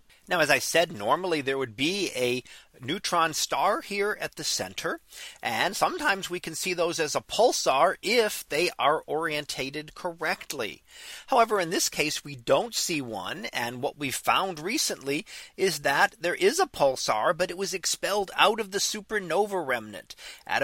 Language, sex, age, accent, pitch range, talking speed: English, male, 40-59, American, 140-185 Hz, 170 wpm